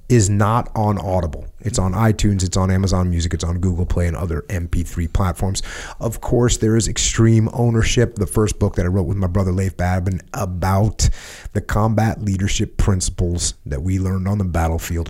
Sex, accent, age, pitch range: male, American, 30-49, 85-110 Hz